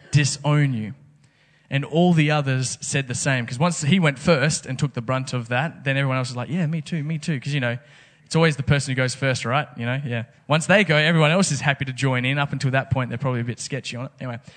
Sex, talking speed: male, 270 wpm